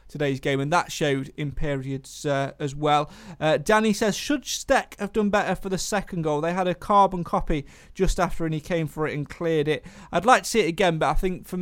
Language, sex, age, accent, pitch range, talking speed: English, male, 30-49, British, 145-170 Hz, 245 wpm